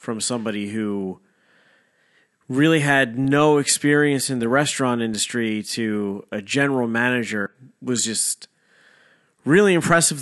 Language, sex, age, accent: English, male, 30-49, American